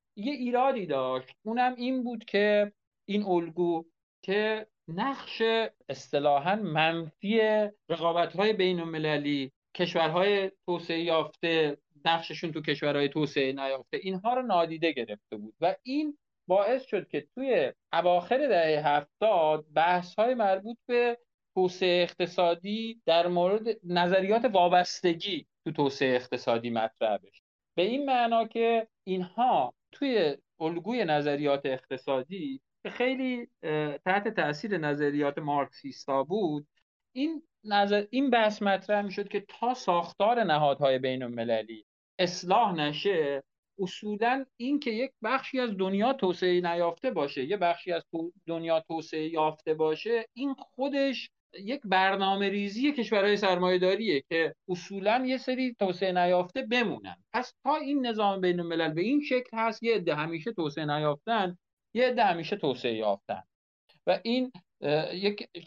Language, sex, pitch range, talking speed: Persian, male, 165-230 Hz, 120 wpm